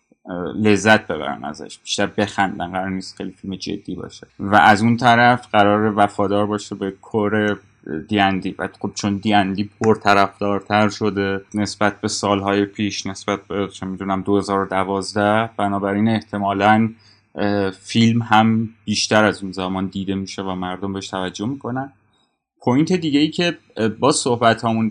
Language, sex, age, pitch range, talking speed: Persian, male, 30-49, 100-110 Hz, 145 wpm